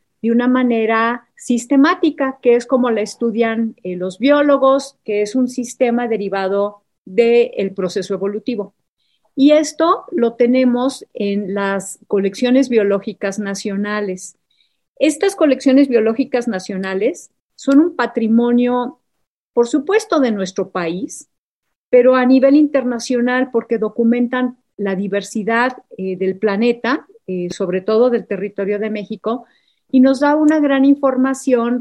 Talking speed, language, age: 125 wpm, Spanish, 40-59